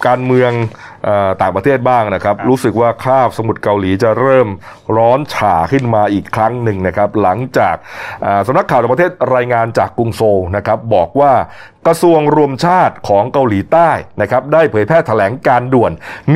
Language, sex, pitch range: Thai, male, 110-150 Hz